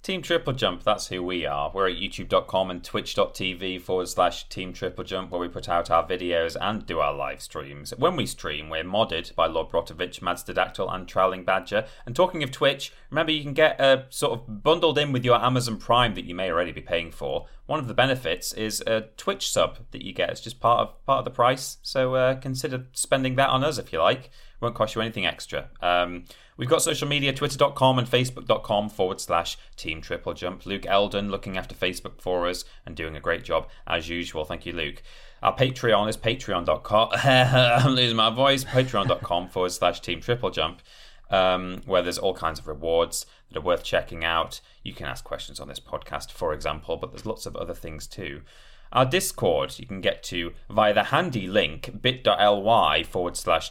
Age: 30-49